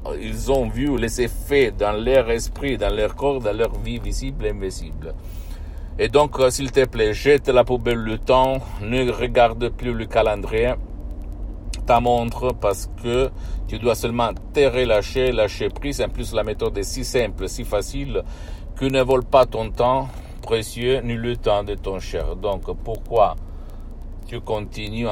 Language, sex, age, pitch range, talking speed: Italian, male, 60-79, 95-125 Hz, 165 wpm